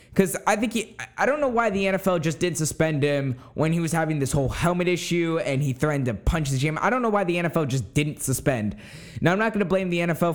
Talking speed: 265 wpm